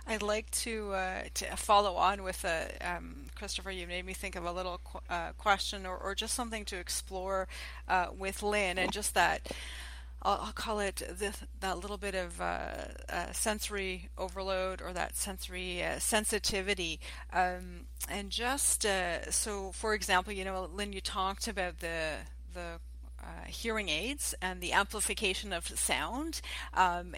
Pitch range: 185-215 Hz